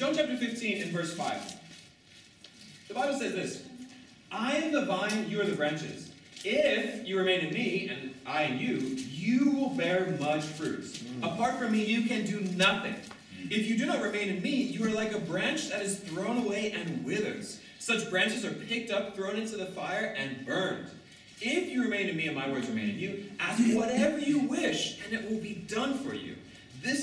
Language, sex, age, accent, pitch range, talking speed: English, male, 30-49, American, 185-250 Hz, 200 wpm